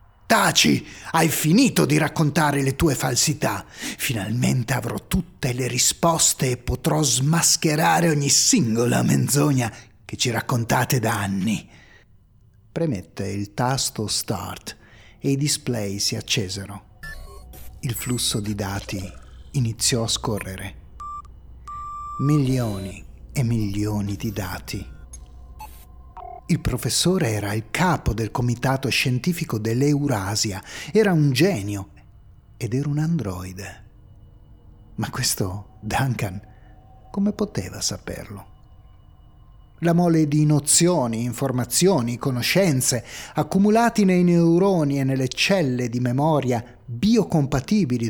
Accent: native